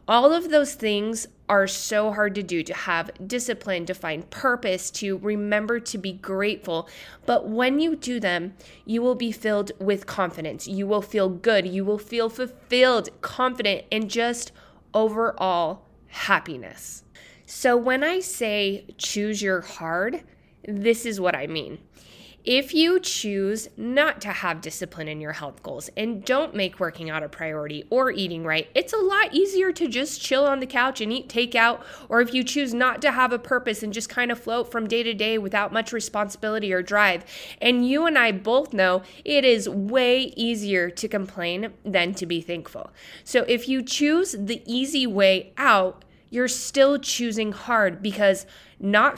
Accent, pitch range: American, 190-245 Hz